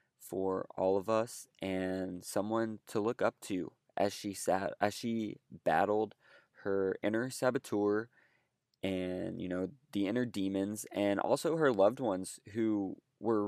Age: 20-39